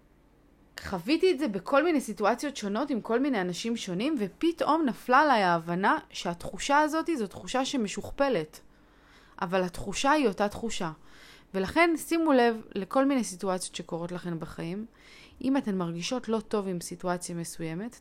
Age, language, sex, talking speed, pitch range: 20-39, Hebrew, female, 145 wpm, 185-255 Hz